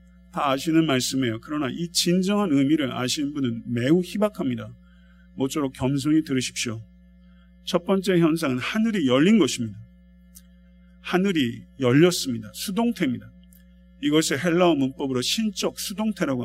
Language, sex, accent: Korean, male, native